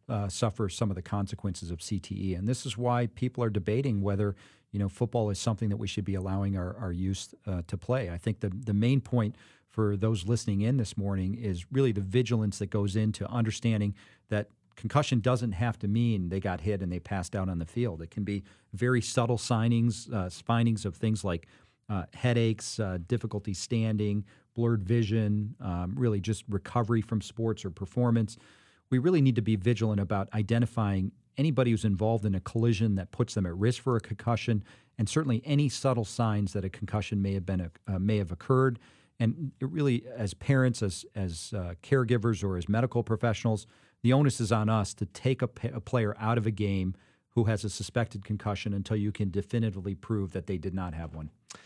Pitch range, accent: 100-120 Hz, American